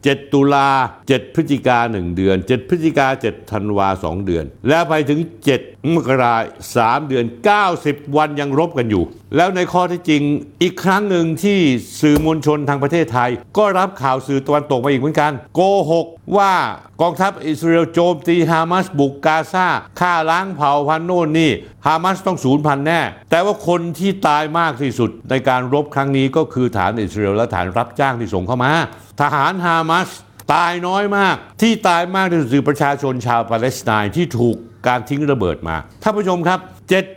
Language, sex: Thai, male